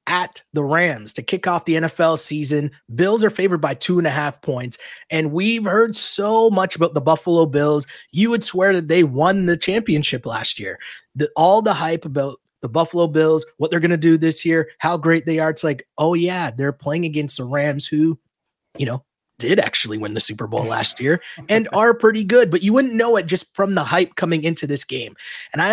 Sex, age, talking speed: male, 30-49, 220 wpm